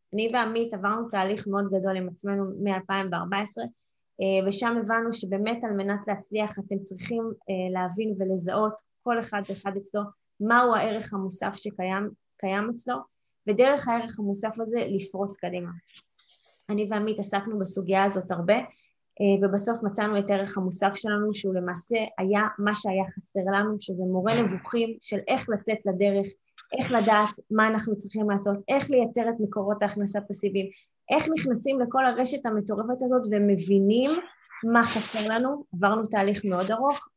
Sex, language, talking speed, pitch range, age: female, Hebrew, 140 wpm, 195-225 Hz, 20-39